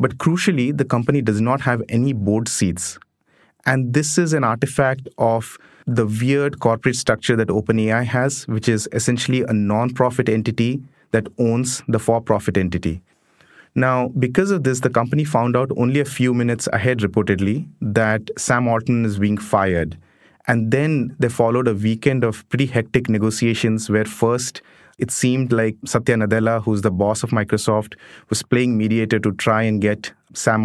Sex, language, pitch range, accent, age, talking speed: male, English, 110-130 Hz, Indian, 30-49, 165 wpm